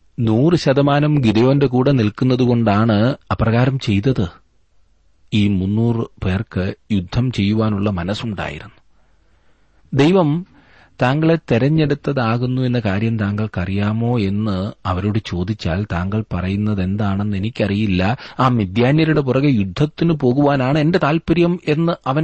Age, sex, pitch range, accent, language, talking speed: 30-49, male, 95-130 Hz, native, Malayalam, 90 wpm